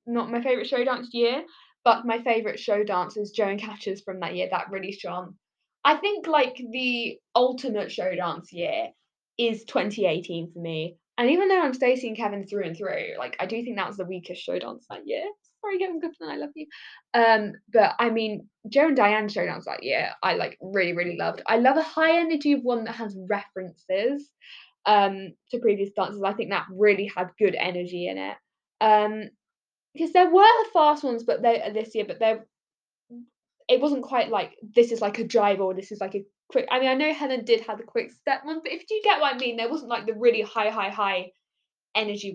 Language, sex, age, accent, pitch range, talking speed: English, female, 10-29, British, 200-265 Hz, 215 wpm